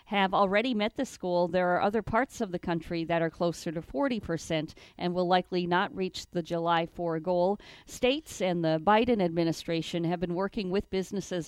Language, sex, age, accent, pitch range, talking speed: English, female, 40-59, American, 170-210 Hz, 190 wpm